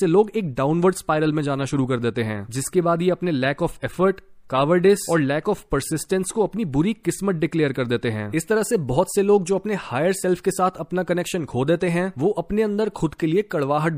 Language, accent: Hindi, native